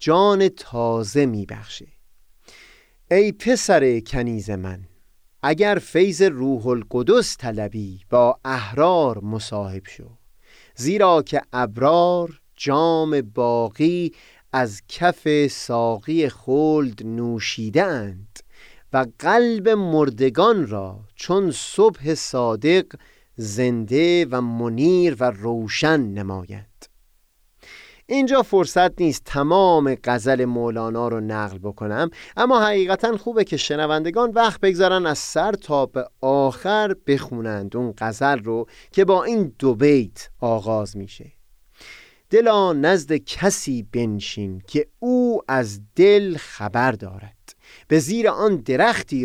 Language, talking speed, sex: Persian, 105 wpm, male